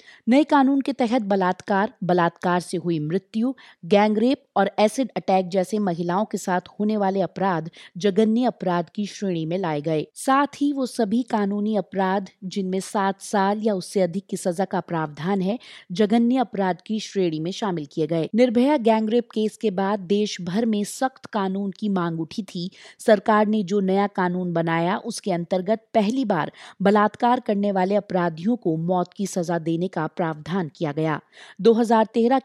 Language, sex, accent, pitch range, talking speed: Hindi, female, native, 180-225 Hz, 165 wpm